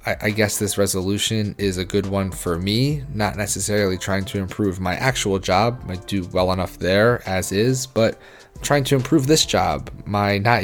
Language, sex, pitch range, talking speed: English, male, 100-115 Hz, 185 wpm